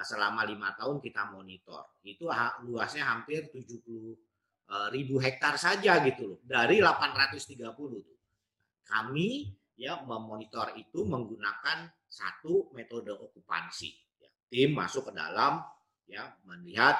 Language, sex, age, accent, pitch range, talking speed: Indonesian, male, 40-59, native, 110-155 Hz, 115 wpm